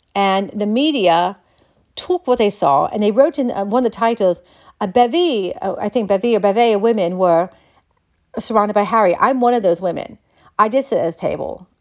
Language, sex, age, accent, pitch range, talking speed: English, female, 40-59, American, 180-240 Hz, 215 wpm